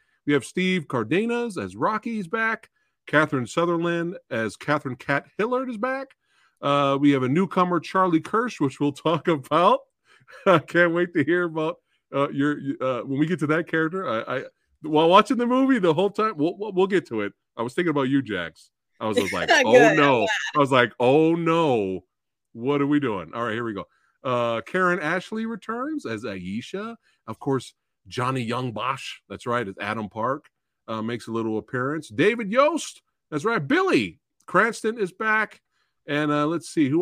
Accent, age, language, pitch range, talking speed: American, 40-59, English, 120-205 Hz, 185 wpm